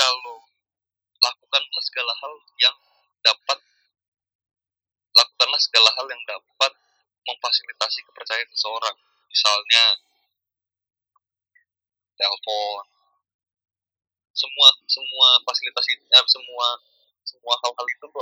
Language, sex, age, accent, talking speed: Indonesian, male, 20-39, native, 75 wpm